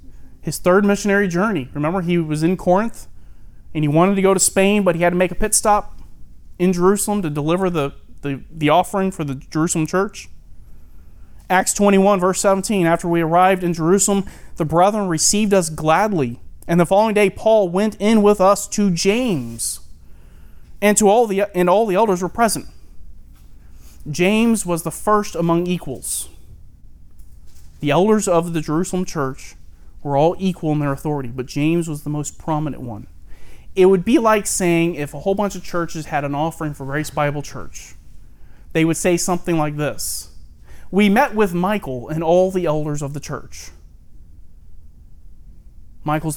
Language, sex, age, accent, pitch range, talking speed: English, male, 30-49, American, 120-185 Hz, 165 wpm